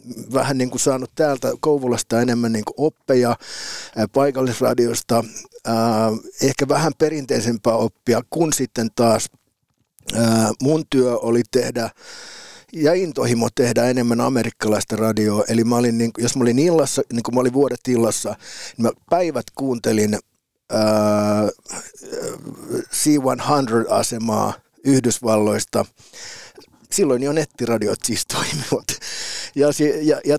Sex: male